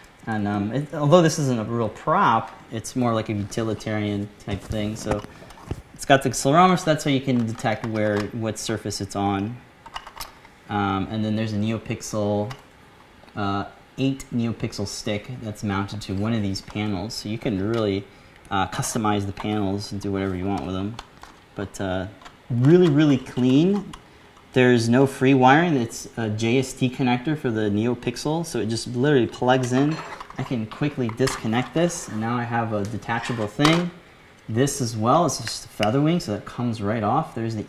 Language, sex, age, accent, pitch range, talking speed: English, male, 30-49, American, 105-135 Hz, 180 wpm